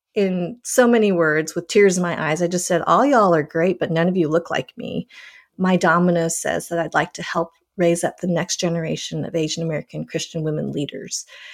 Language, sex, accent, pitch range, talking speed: English, female, American, 165-195 Hz, 220 wpm